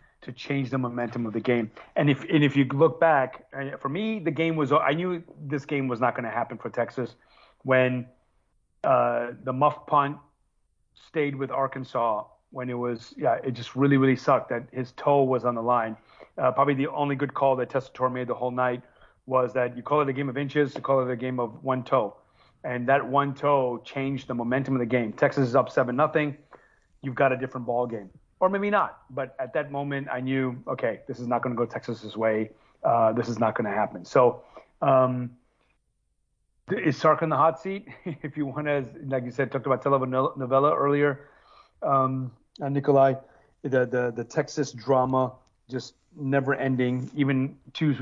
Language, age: German, 30-49